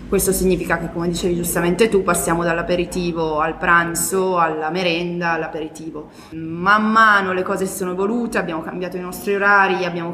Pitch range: 165-185 Hz